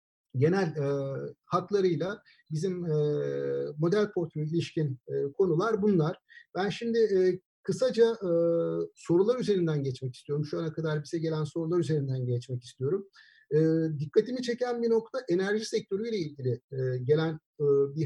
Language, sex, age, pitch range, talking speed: Turkish, male, 50-69, 145-200 Hz, 135 wpm